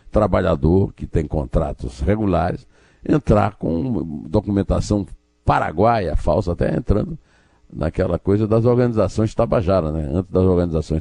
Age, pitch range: 60-79, 75-100 Hz